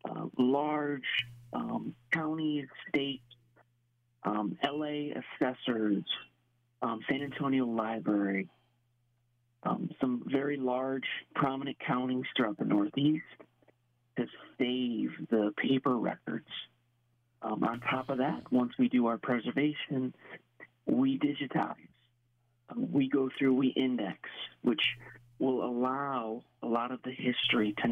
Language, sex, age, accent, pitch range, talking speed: English, male, 40-59, American, 120-130 Hz, 110 wpm